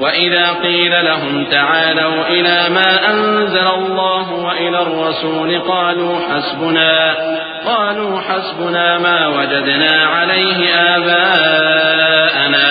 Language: Urdu